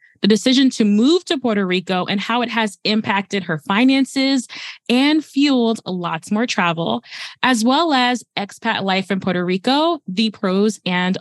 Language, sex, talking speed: English, female, 160 wpm